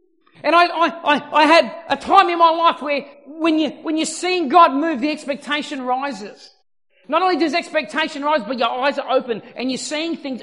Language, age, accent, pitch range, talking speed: English, 40-59, Australian, 260-315 Hz, 190 wpm